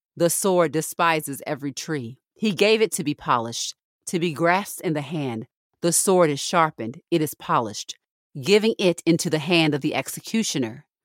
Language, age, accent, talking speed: English, 40-59, American, 175 wpm